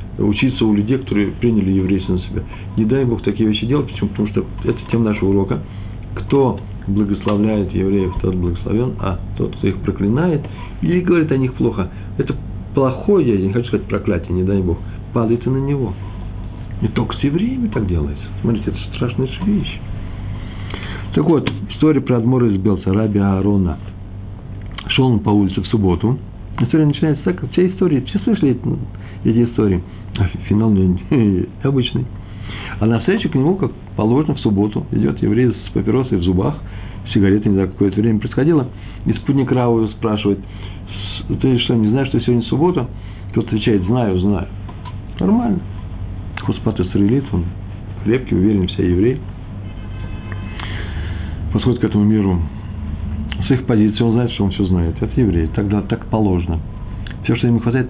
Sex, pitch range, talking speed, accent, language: male, 95-120 Hz, 160 wpm, native, Russian